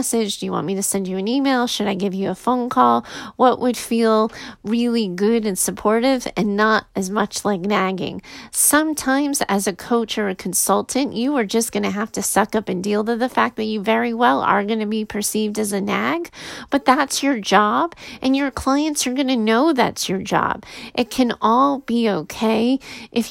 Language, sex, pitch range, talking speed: English, female, 205-255 Hz, 210 wpm